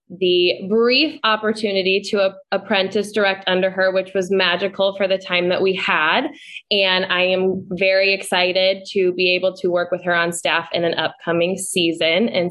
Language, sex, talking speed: English, female, 175 wpm